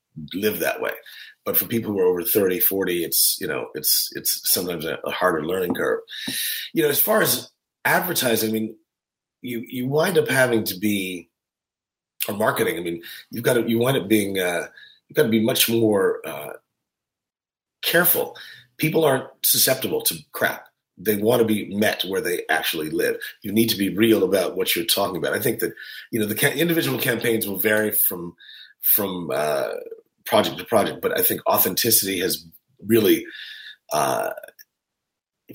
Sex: male